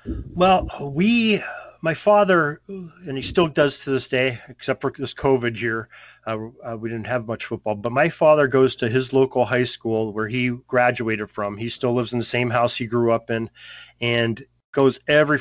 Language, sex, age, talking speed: English, male, 30-49, 195 wpm